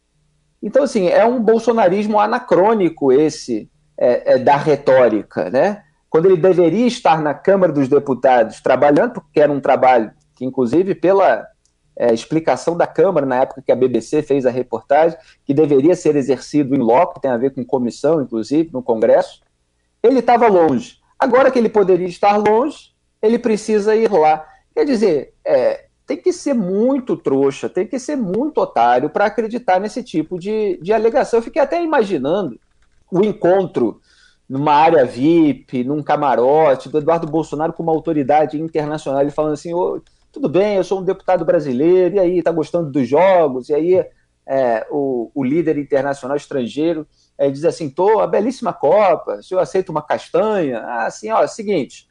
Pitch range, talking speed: 145-215 Hz, 165 wpm